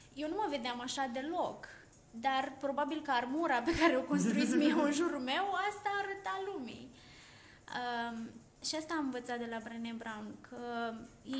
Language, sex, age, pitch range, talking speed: Romanian, female, 20-39, 230-275 Hz, 170 wpm